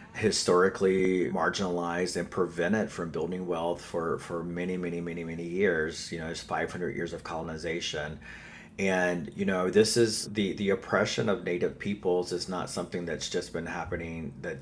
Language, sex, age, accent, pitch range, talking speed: English, male, 30-49, American, 85-95 Hz, 165 wpm